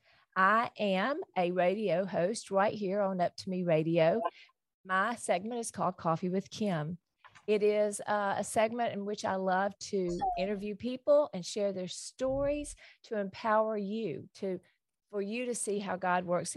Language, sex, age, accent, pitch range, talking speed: English, female, 40-59, American, 180-225 Hz, 165 wpm